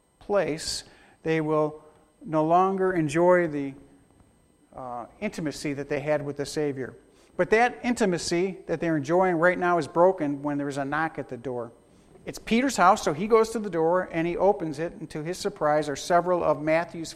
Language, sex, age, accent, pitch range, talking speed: English, male, 50-69, American, 155-200 Hz, 190 wpm